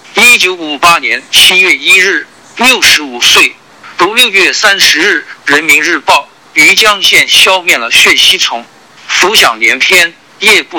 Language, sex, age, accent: Chinese, male, 50-69, native